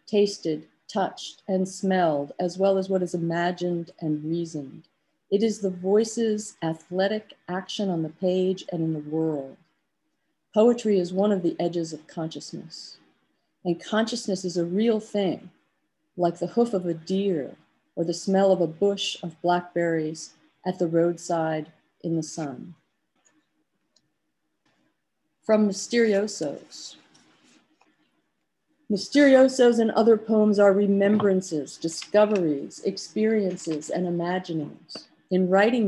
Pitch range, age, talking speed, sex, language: 170-205 Hz, 40-59, 120 wpm, female, English